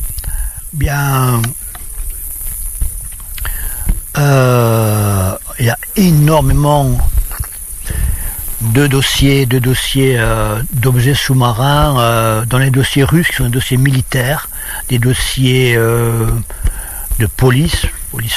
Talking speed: 95 wpm